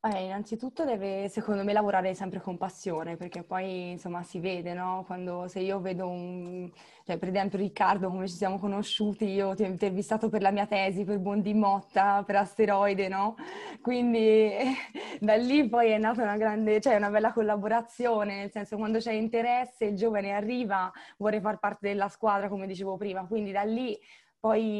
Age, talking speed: 20-39, 180 wpm